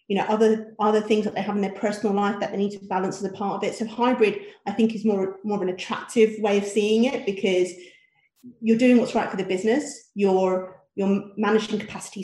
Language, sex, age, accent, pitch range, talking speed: English, female, 30-49, British, 185-220 Hz, 235 wpm